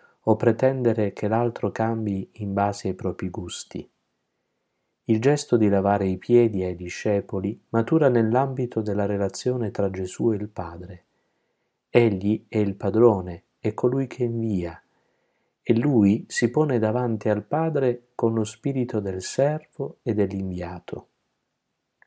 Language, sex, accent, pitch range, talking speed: Italian, male, native, 95-120 Hz, 135 wpm